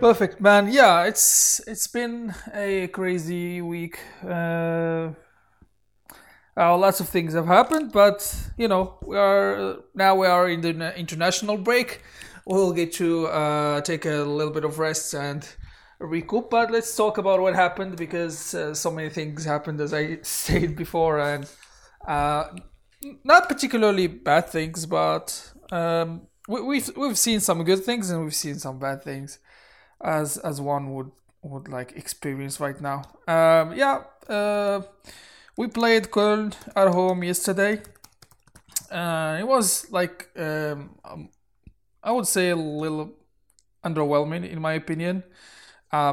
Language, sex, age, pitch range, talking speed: English, male, 20-39, 150-195 Hz, 145 wpm